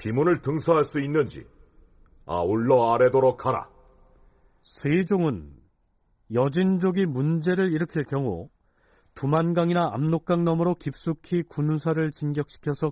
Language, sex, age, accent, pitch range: Korean, male, 40-59, native, 115-160 Hz